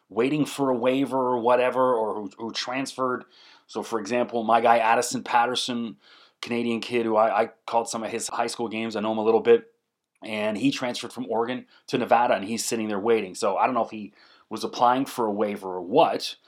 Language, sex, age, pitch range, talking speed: English, male, 30-49, 115-155 Hz, 220 wpm